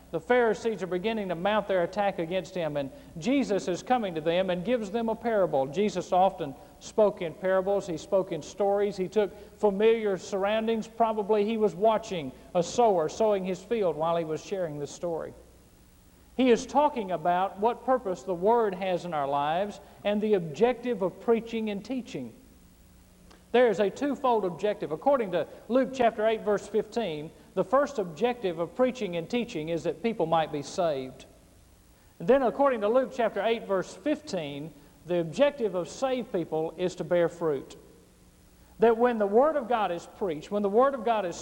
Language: English